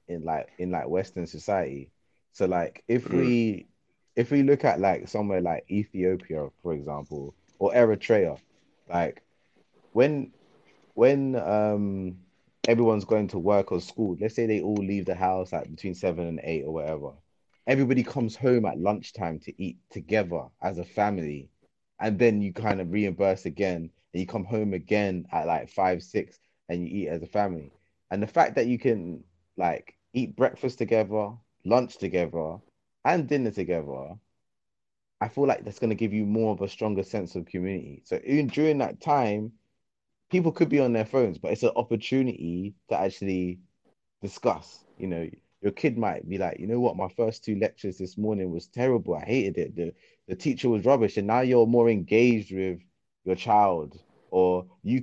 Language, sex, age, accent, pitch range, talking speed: English, male, 20-39, British, 90-115 Hz, 180 wpm